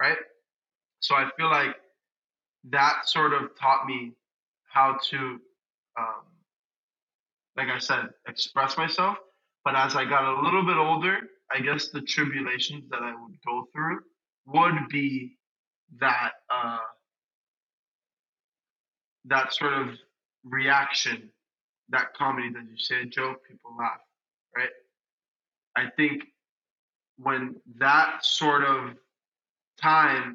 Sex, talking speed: male, 115 wpm